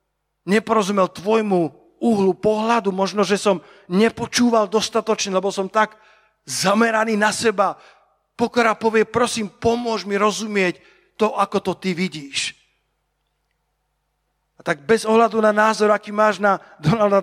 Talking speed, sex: 125 wpm, male